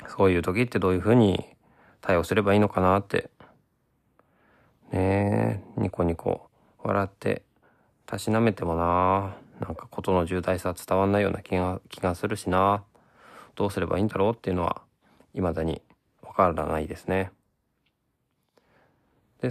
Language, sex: Japanese, male